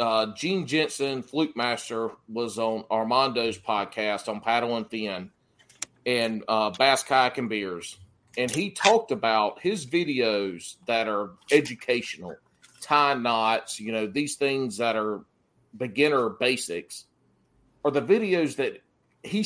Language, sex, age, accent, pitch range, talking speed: English, male, 40-59, American, 110-165 Hz, 135 wpm